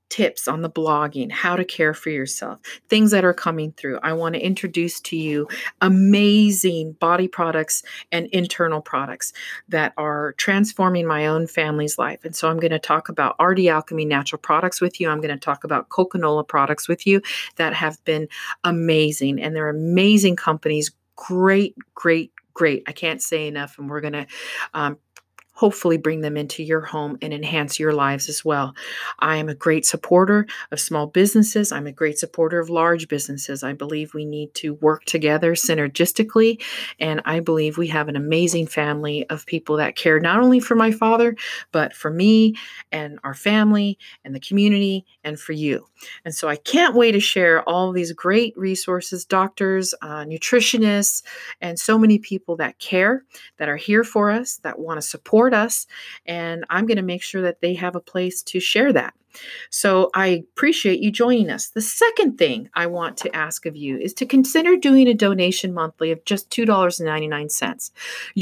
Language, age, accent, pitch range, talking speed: English, 40-59, American, 155-200 Hz, 180 wpm